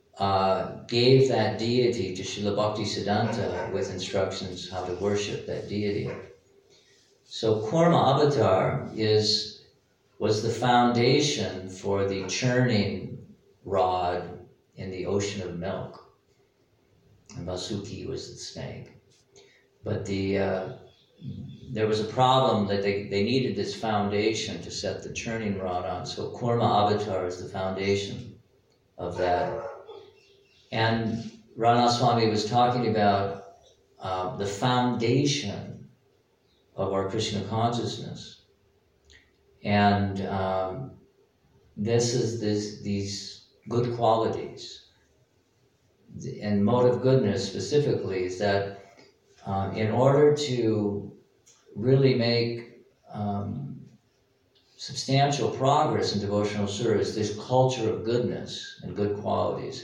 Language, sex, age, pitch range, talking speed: English, male, 50-69, 100-120 Hz, 110 wpm